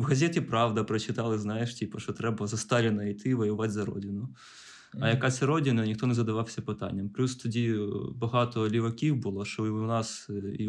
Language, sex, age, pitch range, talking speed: Ukrainian, male, 20-39, 105-125 Hz, 180 wpm